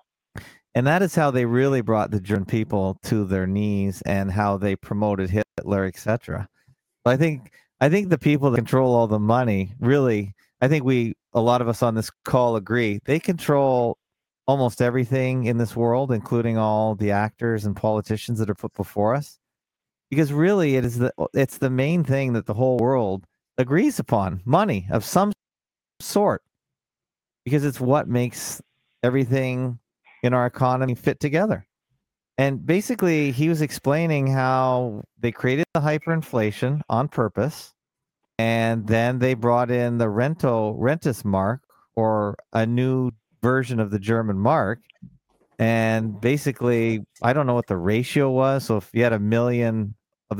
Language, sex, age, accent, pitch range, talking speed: English, male, 40-59, American, 110-135 Hz, 160 wpm